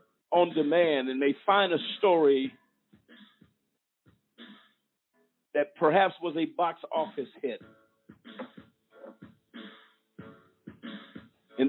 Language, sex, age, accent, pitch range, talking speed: English, male, 50-69, American, 120-170 Hz, 75 wpm